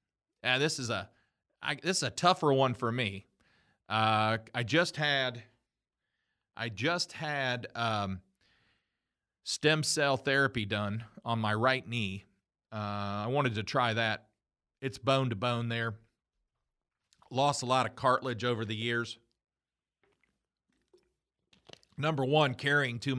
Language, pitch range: English, 110-130 Hz